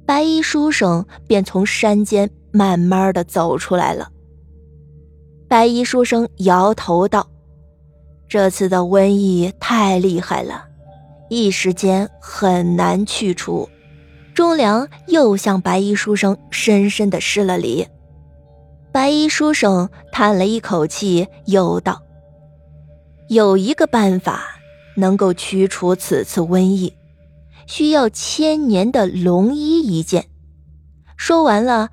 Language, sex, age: Chinese, female, 20-39